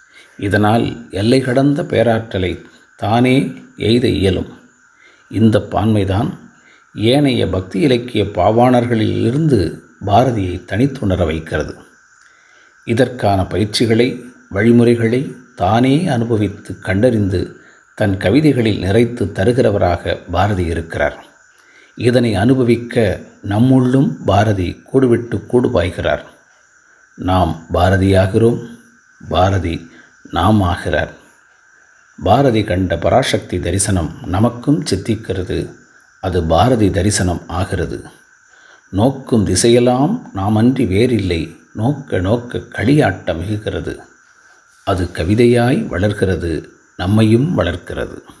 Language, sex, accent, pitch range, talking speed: Tamil, male, native, 95-125 Hz, 80 wpm